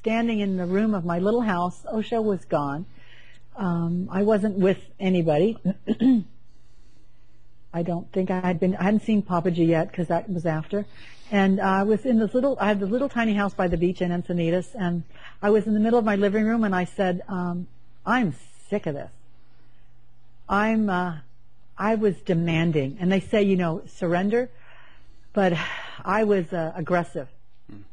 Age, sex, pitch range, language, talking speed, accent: 50-69, female, 165-215 Hz, English, 180 wpm, American